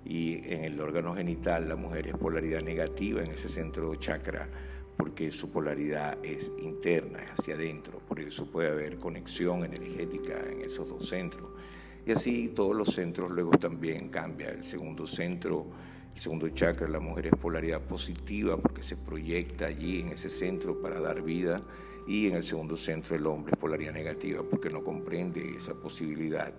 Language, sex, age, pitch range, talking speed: Spanish, male, 50-69, 80-95 Hz, 175 wpm